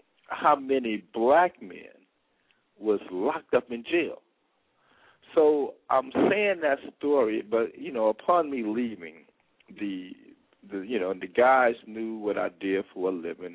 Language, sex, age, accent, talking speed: English, male, 50-69, American, 150 wpm